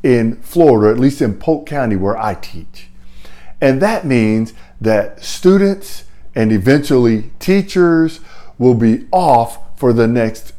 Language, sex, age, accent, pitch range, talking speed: English, male, 50-69, American, 100-165 Hz, 135 wpm